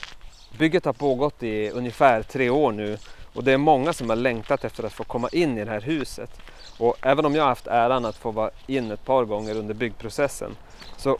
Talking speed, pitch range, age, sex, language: 215 wpm, 110-135 Hz, 30-49, male, Swedish